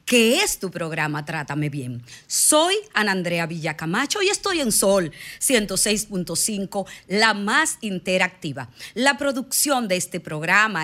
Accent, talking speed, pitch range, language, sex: American, 125 wpm, 155-205 Hz, Spanish, female